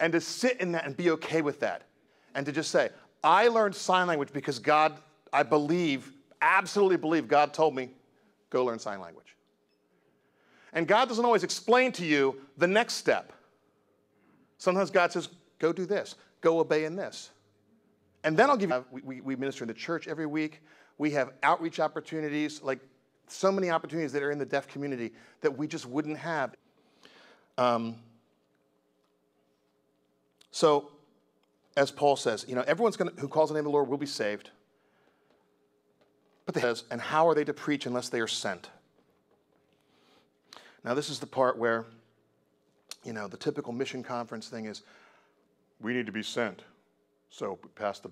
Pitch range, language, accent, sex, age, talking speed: 115-160 Hz, English, American, male, 40-59, 170 wpm